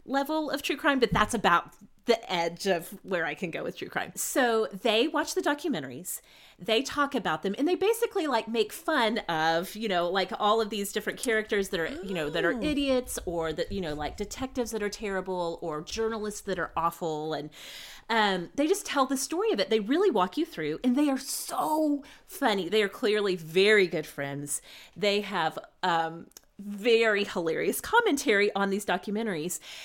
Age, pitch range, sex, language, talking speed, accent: 30-49, 175-245 Hz, female, English, 195 wpm, American